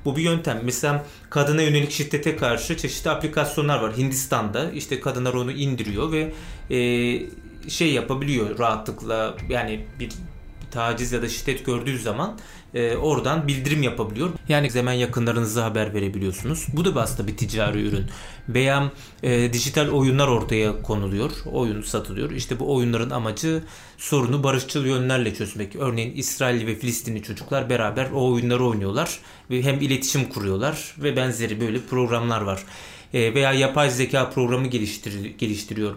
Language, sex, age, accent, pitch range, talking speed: Turkish, male, 30-49, native, 110-140 Hz, 135 wpm